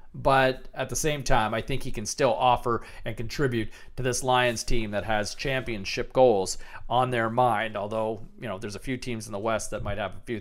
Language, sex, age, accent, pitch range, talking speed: English, male, 40-59, American, 115-145 Hz, 225 wpm